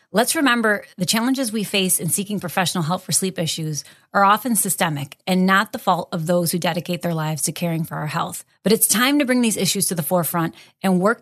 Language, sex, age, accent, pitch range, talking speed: English, female, 30-49, American, 170-205 Hz, 230 wpm